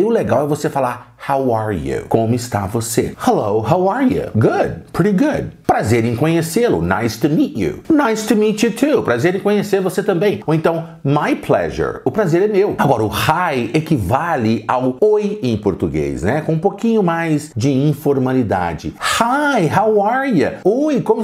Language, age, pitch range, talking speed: Portuguese, 50-69, 125-205 Hz, 185 wpm